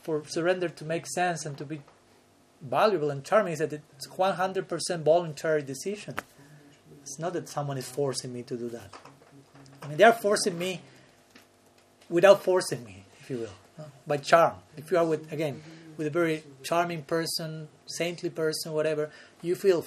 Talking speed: 170 wpm